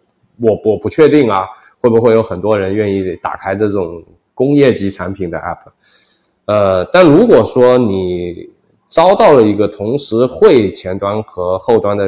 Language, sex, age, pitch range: Chinese, male, 20-39, 95-125 Hz